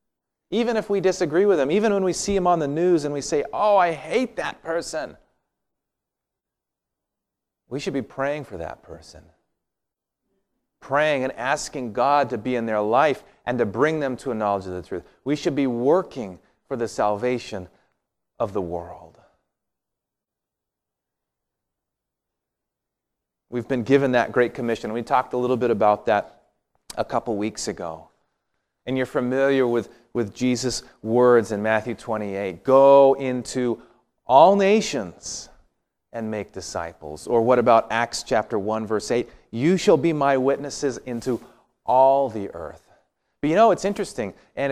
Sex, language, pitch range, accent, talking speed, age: male, English, 115-145 Hz, American, 155 wpm, 30-49